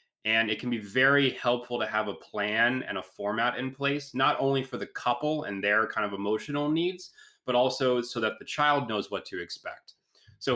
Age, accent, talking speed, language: 20-39, American, 210 wpm, English